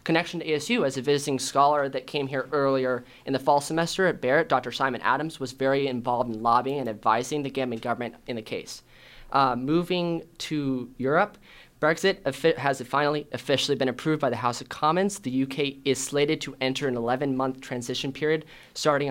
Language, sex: English, male